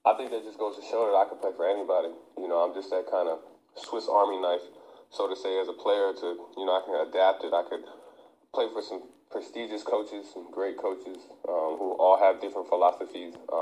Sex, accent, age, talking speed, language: male, American, 20-39, 235 wpm, Greek